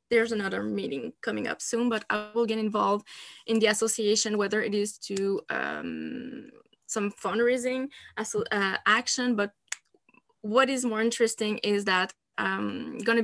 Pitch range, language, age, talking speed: 210-240 Hz, English, 20-39, 145 wpm